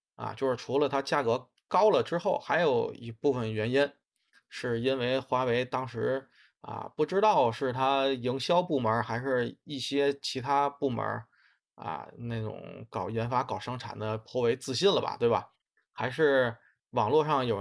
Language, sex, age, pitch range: Chinese, male, 20-39, 115-150 Hz